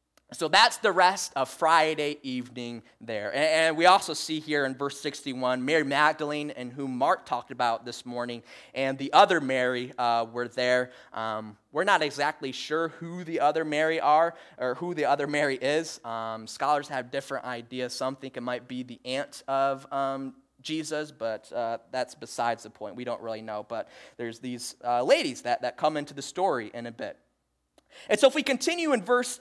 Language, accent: English, American